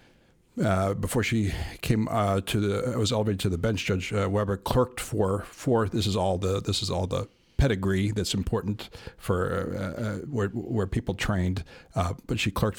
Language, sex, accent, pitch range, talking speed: English, male, American, 95-115 Hz, 190 wpm